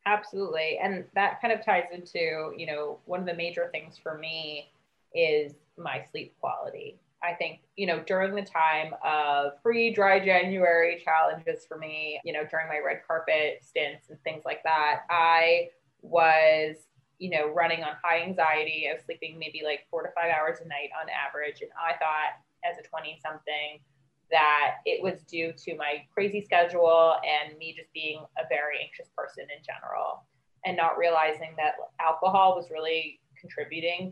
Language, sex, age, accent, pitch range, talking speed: English, female, 20-39, American, 155-185 Hz, 170 wpm